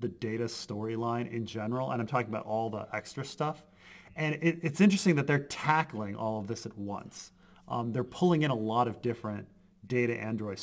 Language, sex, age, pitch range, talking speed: English, male, 30-49, 110-150 Hz, 200 wpm